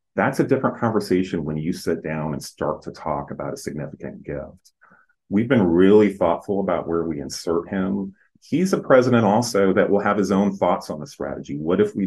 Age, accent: 30-49, American